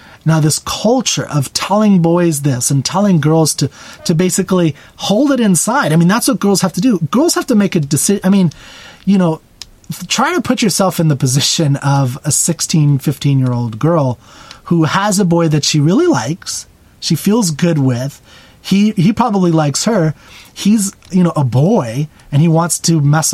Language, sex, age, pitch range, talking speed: English, male, 30-49, 150-195 Hz, 190 wpm